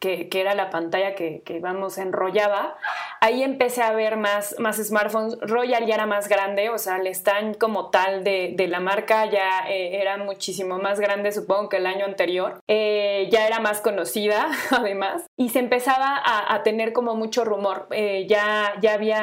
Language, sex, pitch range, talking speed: Spanish, female, 200-225 Hz, 190 wpm